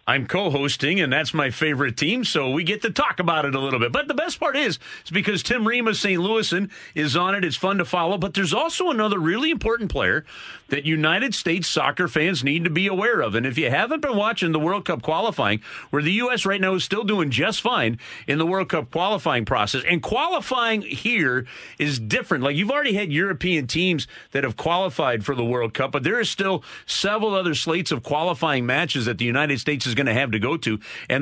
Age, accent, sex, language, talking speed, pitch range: 40-59, American, male, English, 230 wpm, 130-185 Hz